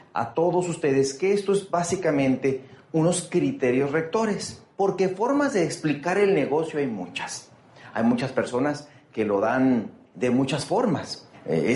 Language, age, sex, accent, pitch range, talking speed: Spanish, 40-59, male, Mexican, 130-180 Hz, 145 wpm